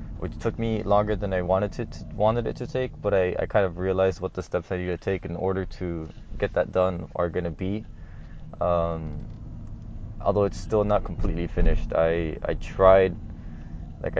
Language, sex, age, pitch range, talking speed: English, male, 20-39, 85-100 Hz, 200 wpm